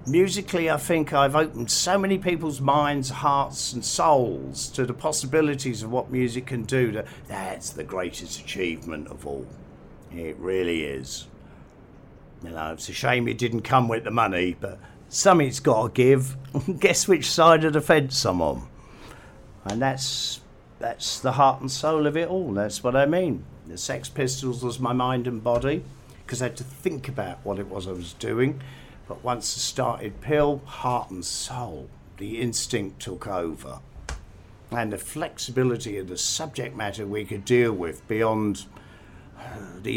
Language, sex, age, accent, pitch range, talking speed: English, male, 50-69, British, 105-140 Hz, 170 wpm